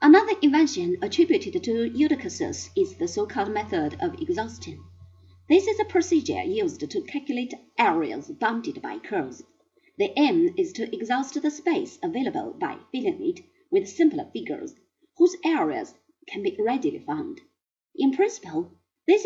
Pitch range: 285-365 Hz